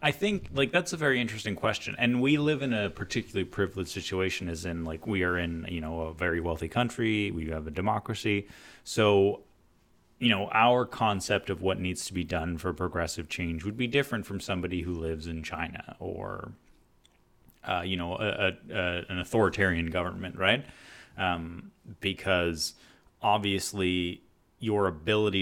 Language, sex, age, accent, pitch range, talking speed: English, male, 30-49, American, 85-105 Hz, 170 wpm